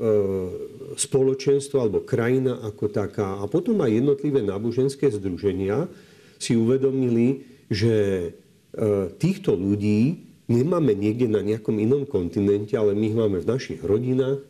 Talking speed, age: 120 wpm, 50-69